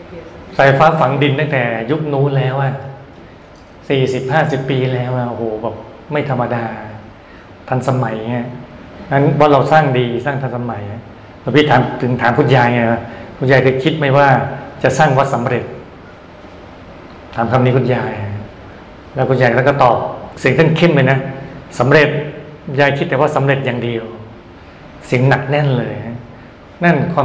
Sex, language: male, Thai